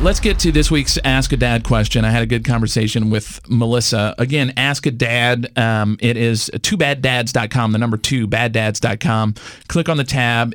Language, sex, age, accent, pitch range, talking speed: English, male, 40-59, American, 115-140 Hz, 175 wpm